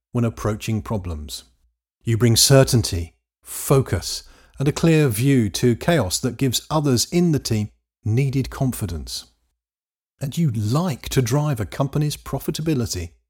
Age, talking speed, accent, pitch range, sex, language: 50-69, 130 wpm, British, 100-145 Hz, male, English